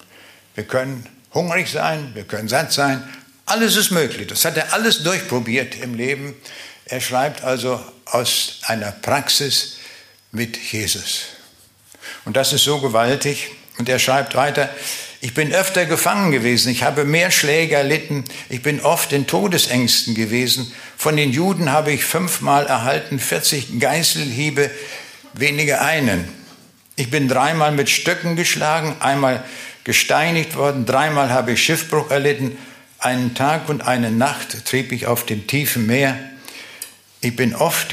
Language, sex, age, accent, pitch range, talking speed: German, male, 60-79, German, 120-145 Hz, 140 wpm